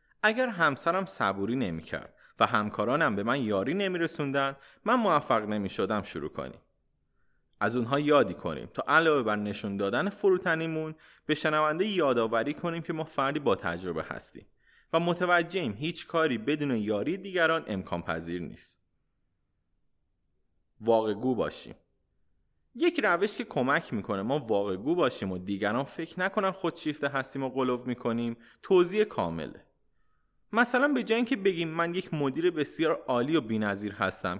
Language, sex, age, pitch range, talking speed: Persian, male, 20-39, 105-170 Hz, 140 wpm